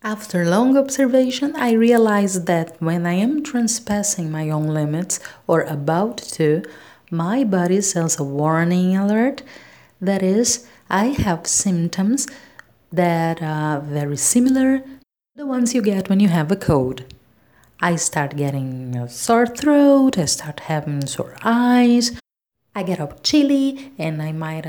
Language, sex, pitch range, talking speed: English, female, 155-230 Hz, 145 wpm